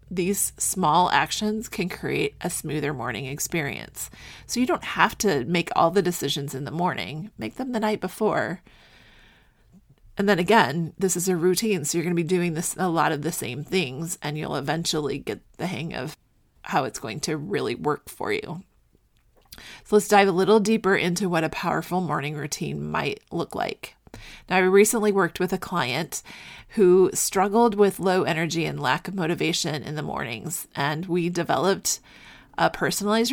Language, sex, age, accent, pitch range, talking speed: English, female, 30-49, American, 155-195 Hz, 180 wpm